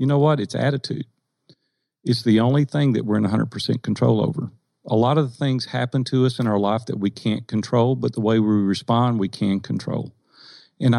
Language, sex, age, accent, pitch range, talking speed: English, male, 50-69, American, 105-130 Hz, 215 wpm